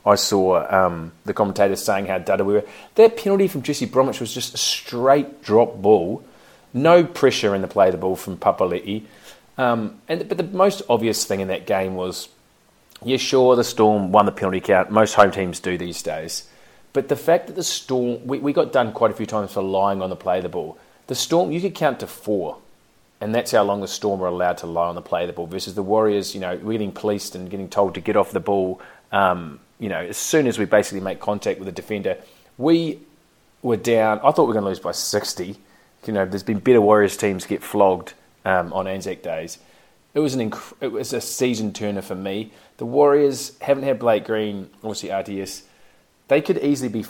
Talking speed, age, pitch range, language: 225 wpm, 30-49, 95-125 Hz, English